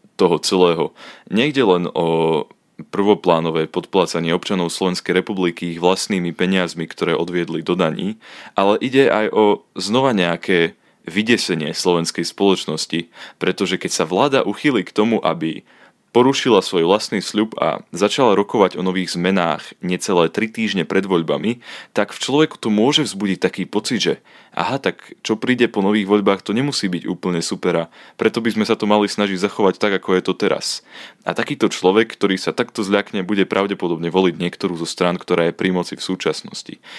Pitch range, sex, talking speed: 85-100 Hz, male, 165 wpm